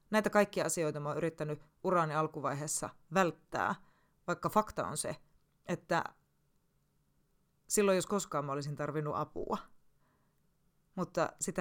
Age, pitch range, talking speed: 30-49, 150-185 Hz, 120 wpm